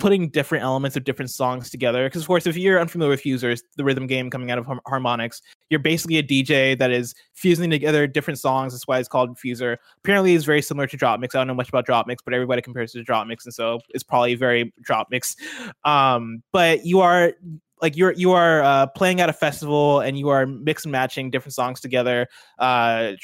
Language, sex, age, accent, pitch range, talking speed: English, male, 20-39, American, 125-150 Hz, 225 wpm